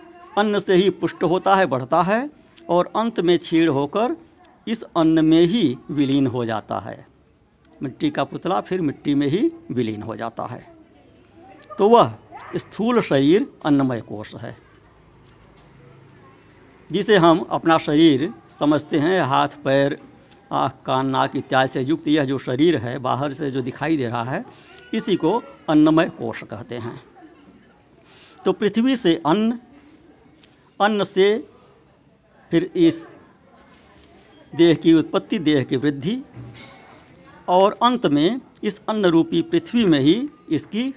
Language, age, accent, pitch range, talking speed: Hindi, 60-79, native, 135-210 Hz, 135 wpm